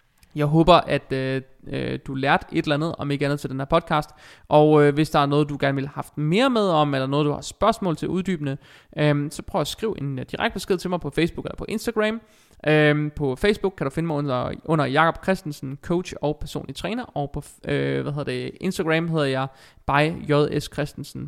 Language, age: Danish, 20-39